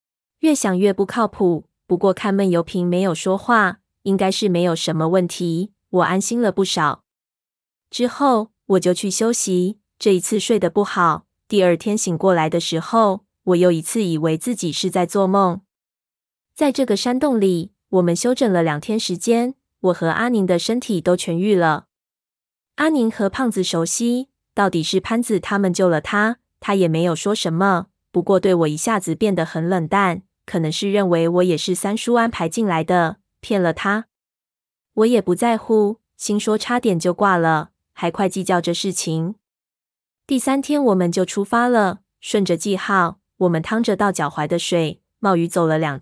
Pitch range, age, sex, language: 175-215 Hz, 20-39, female, Chinese